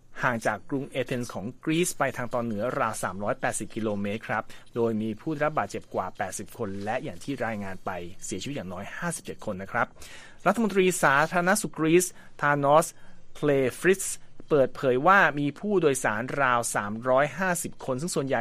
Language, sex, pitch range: Thai, male, 120-165 Hz